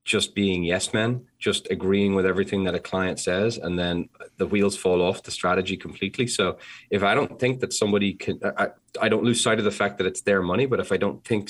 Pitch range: 95-115 Hz